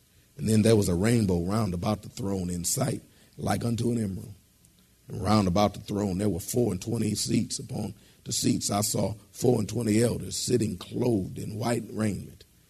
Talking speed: 195 wpm